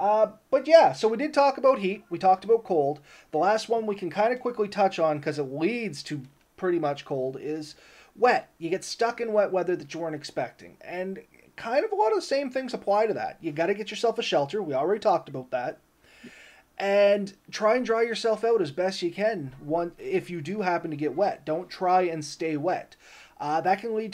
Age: 30-49